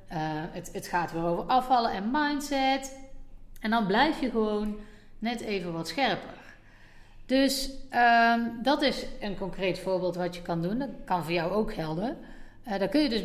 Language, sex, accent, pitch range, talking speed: Dutch, female, Dutch, 175-245 Hz, 180 wpm